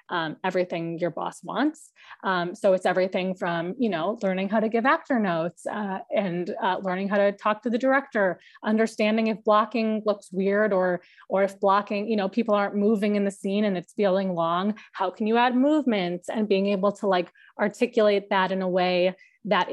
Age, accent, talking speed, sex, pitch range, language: 20-39, American, 200 wpm, female, 180-215 Hz, English